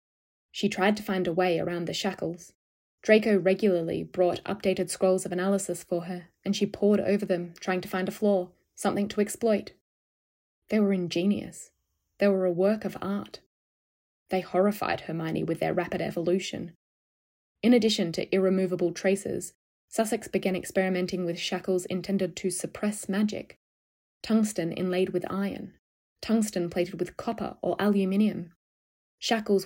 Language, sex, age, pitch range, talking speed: English, female, 20-39, 180-200 Hz, 145 wpm